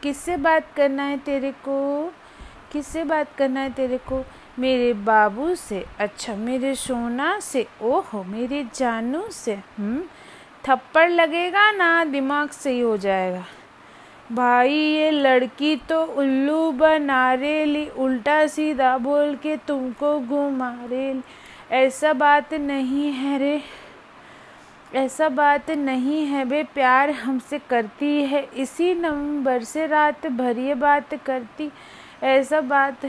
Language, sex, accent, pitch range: Hindi, female, native, 245-300 Hz